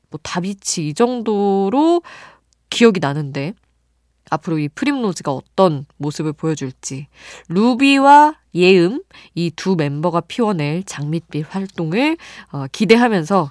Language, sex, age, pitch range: Korean, female, 20-39, 155-240 Hz